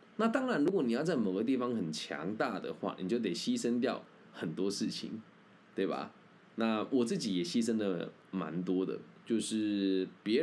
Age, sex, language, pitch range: 20-39, male, Chinese, 95-125 Hz